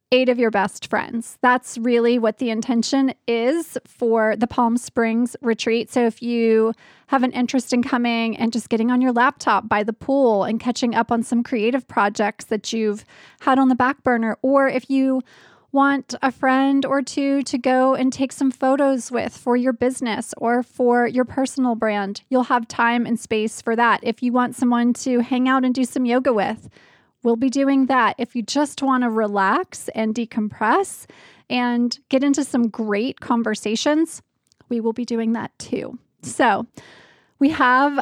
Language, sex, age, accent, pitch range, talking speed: English, female, 20-39, American, 230-265 Hz, 185 wpm